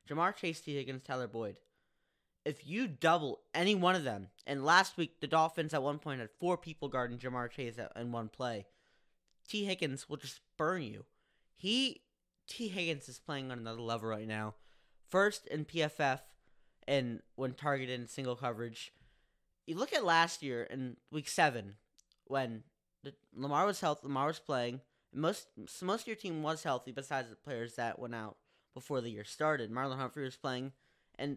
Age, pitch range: 20-39, 125-165 Hz